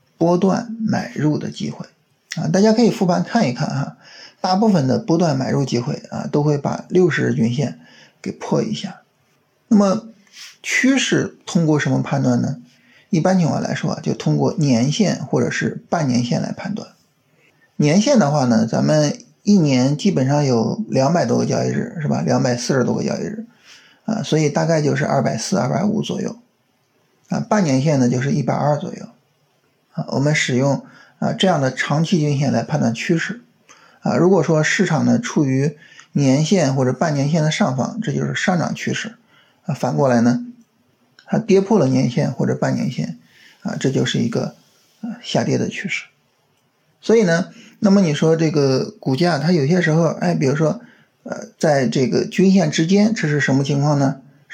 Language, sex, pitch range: Chinese, male, 135-200 Hz